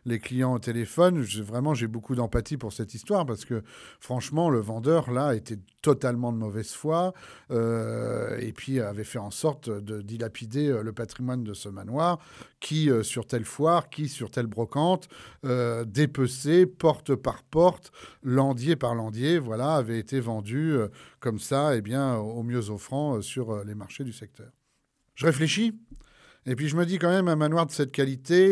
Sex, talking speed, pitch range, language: male, 185 wpm, 115-150 Hz, French